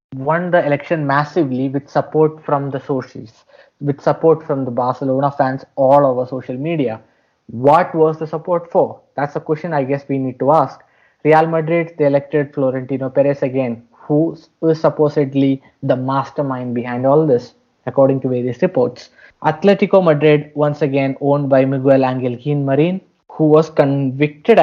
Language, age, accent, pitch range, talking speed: English, 20-39, Indian, 135-155 Hz, 155 wpm